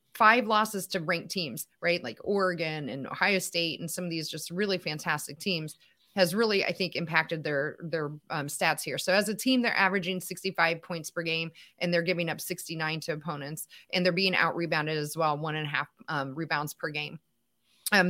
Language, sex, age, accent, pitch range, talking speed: English, female, 30-49, American, 160-200 Hz, 205 wpm